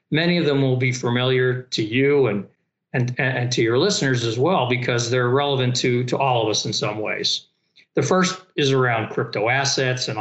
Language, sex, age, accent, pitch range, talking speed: English, male, 50-69, American, 115-140 Hz, 200 wpm